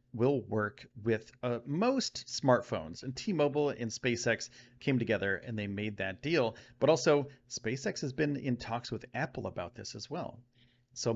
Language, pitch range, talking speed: English, 115-155 Hz, 165 wpm